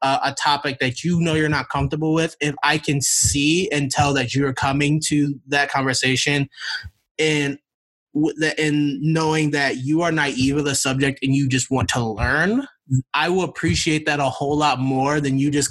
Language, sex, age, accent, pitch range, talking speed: English, male, 20-39, American, 130-150 Hz, 185 wpm